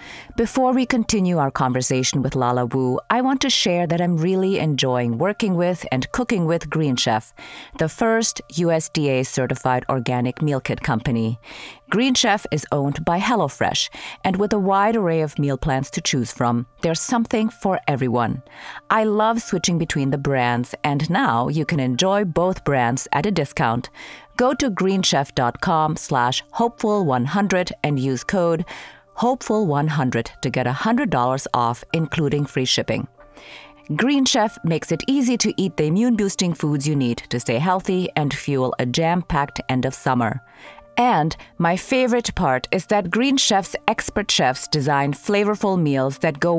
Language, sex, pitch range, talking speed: English, female, 130-205 Hz, 155 wpm